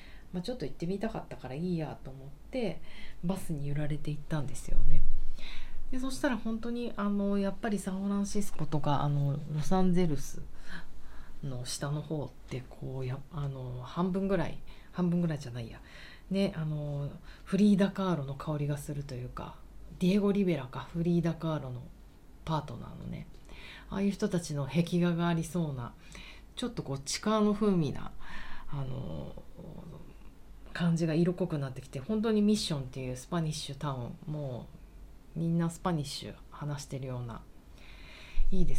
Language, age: Japanese, 40-59